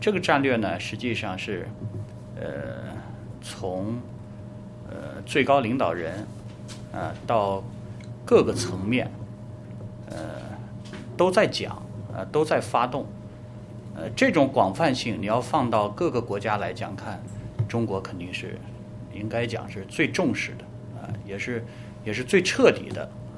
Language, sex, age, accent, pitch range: Chinese, male, 30-49, native, 105-120 Hz